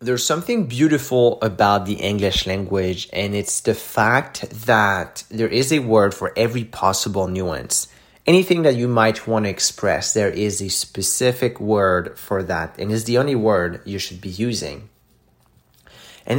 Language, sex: English, male